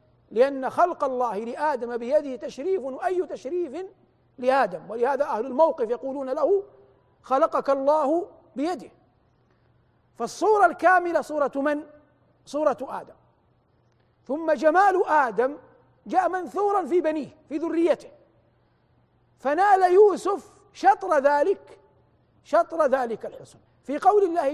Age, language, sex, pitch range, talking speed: 50-69, Arabic, male, 250-320 Hz, 105 wpm